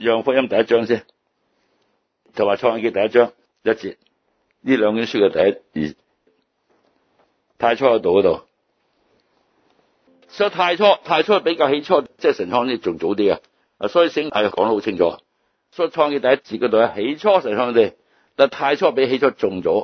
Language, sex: Chinese, male